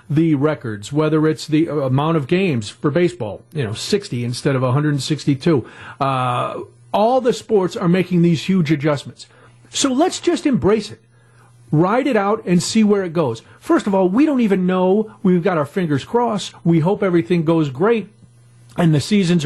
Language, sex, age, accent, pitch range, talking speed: English, male, 50-69, American, 140-220 Hz, 180 wpm